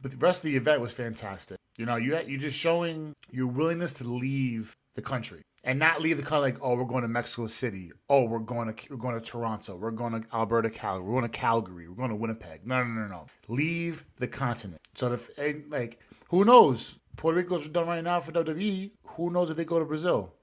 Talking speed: 235 wpm